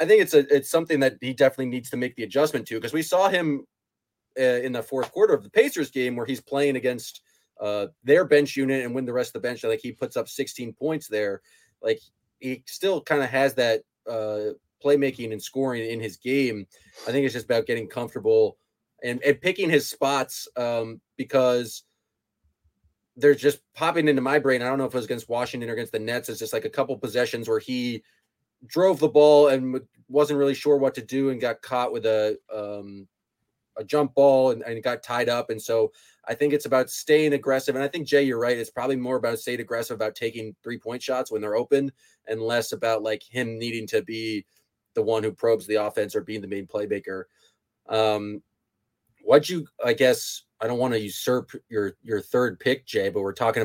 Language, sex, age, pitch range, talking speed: English, male, 20-39, 110-145 Hz, 215 wpm